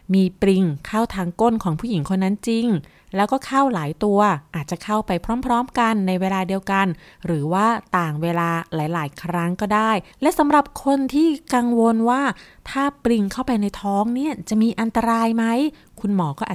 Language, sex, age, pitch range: Thai, female, 20-39, 180-235 Hz